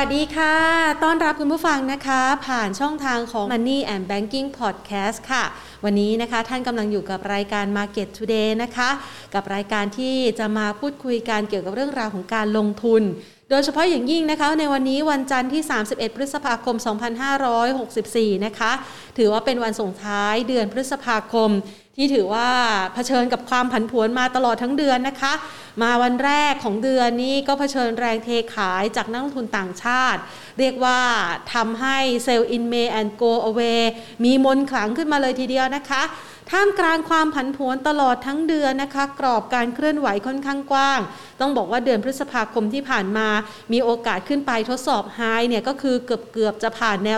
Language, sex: Thai, female